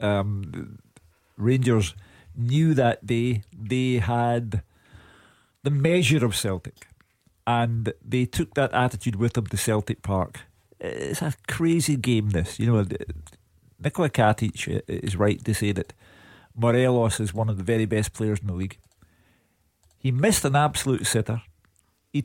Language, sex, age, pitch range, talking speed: English, male, 50-69, 100-125 Hz, 140 wpm